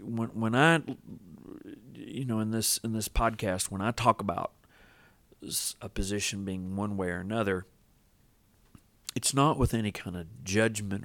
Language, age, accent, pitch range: English, 50-69, American, 95-115 Hz